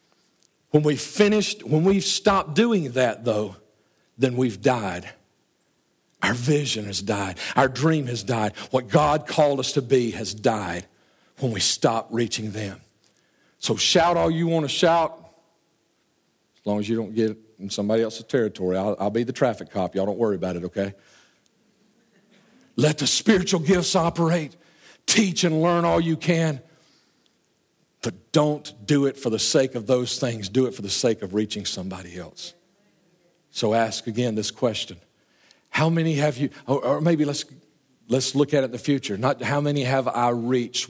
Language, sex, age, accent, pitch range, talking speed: English, male, 50-69, American, 110-150 Hz, 170 wpm